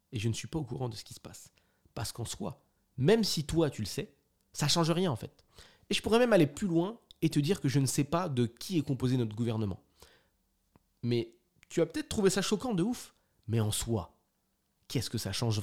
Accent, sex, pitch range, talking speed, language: French, male, 110-160 Hz, 240 wpm, French